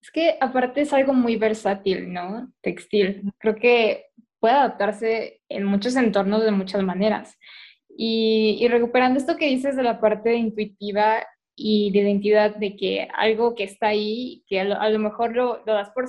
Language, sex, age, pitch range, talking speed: Spanish, female, 10-29, 210-255 Hz, 180 wpm